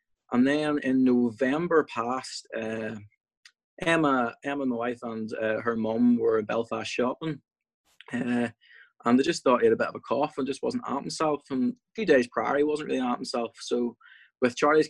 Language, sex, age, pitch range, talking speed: English, male, 20-39, 115-140 Hz, 195 wpm